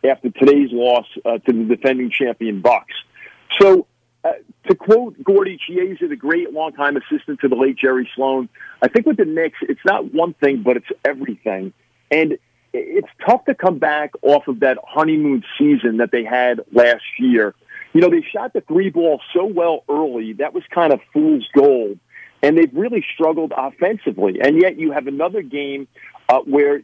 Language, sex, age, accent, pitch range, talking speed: English, male, 50-69, American, 130-190 Hz, 180 wpm